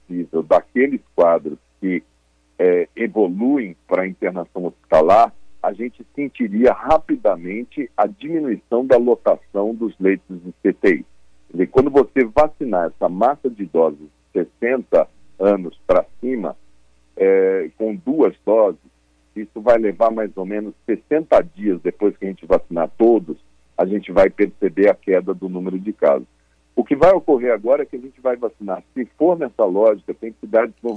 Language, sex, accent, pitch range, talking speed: Portuguese, male, Brazilian, 90-130 Hz, 155 wpm